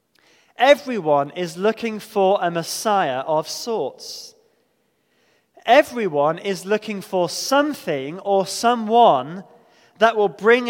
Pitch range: 175-225 Hz